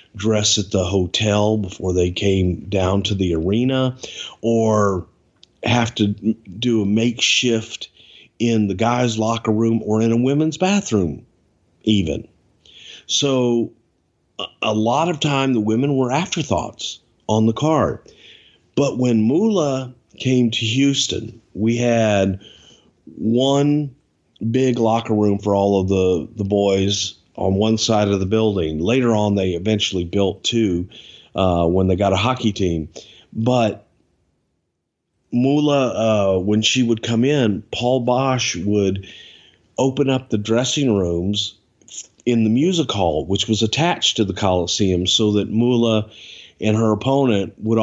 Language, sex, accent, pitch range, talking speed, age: English, male, American, 100-120 Hz, 140 wpm, 40-59